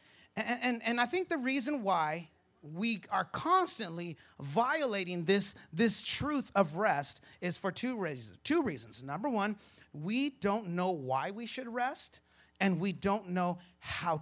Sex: male